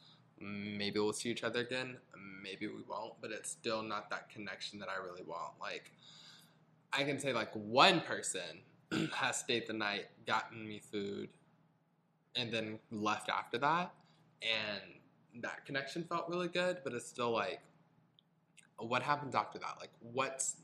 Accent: American